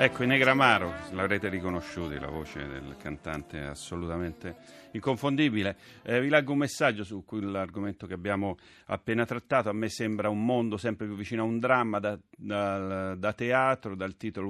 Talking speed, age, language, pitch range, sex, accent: 165 wpm, 40-59, Italian, 95-120 Hz, male, native